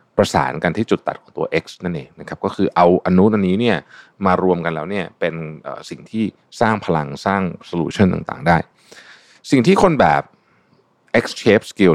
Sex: male